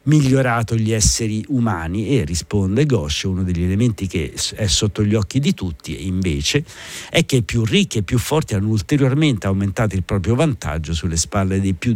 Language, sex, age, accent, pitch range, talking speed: Italian, male, 50-69, native, 95-120 Hz, 180 wpm